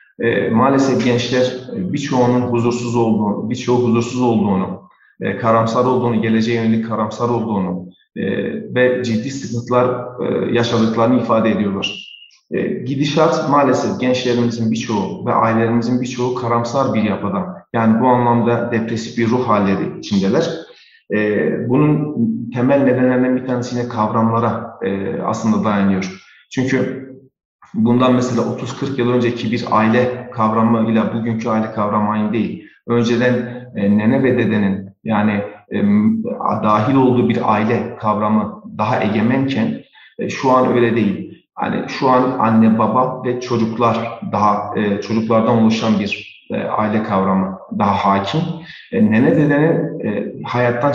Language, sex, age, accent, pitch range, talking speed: Turkish, male, 40-59, native, 110-125 Hz, 115 wpm